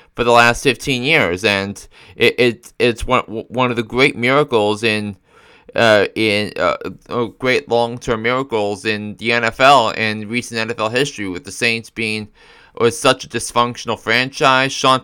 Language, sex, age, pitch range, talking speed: English, male, 20-39, 105-130 Hz, 160 wpm